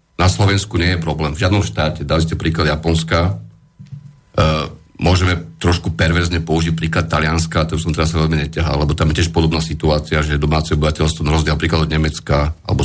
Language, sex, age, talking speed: Slovak, male, 40-59, 185 wpm